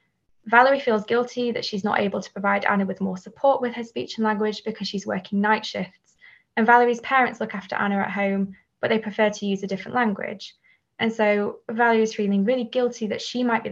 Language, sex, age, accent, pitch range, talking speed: English, female, 10-29, British, 190-220 Hz, 220 wpm